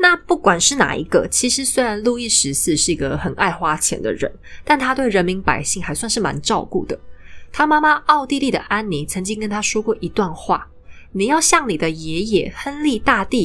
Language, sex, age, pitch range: Chinese, female, 20-39, 165-240 Hz